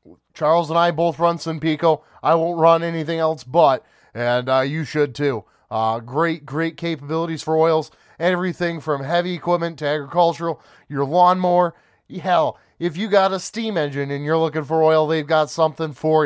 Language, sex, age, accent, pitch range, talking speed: English, male, 30-49, American, 140-170 Hz, 175 wpm